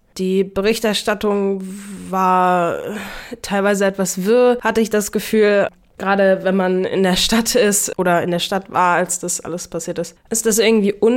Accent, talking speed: German, 160 wpm